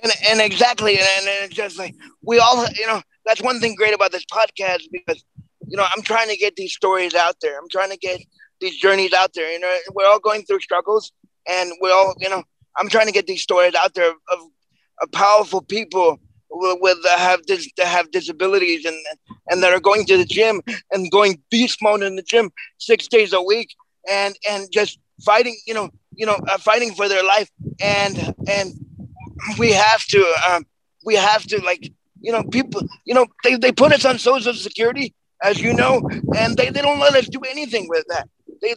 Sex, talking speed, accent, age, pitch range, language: male, 215 wpm, American, 30-49, 190-255 Hz, English